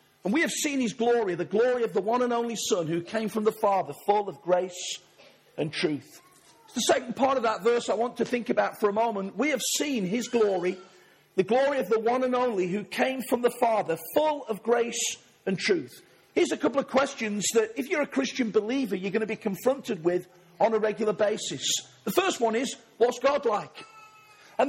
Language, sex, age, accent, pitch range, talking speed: English, male, 40-59, British, 215-275 Hz, 215 wpm